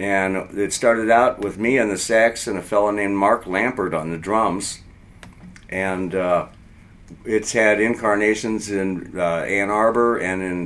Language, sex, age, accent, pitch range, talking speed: English, male, 50-69, American, 90-110 Hz, 165 wpm